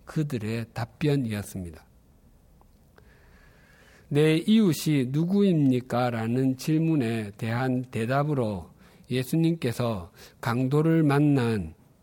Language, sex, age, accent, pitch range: Korean, male, 50-69, native, 110-150 Hz